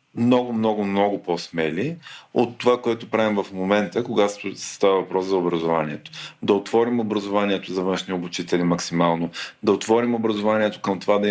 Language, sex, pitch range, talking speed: Bulgarian, male, 95-115 Hz, 150 wpm